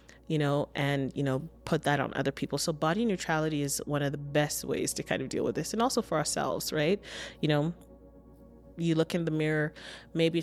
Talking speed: 220 wpm